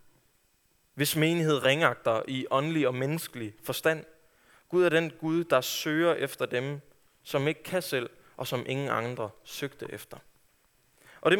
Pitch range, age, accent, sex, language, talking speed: 130-165 Hz, 20-39, native, male, Danish, 145 wpm